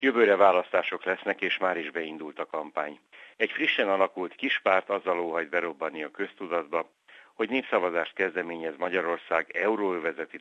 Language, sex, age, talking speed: Hungarian, male, 60-79, 140 wpm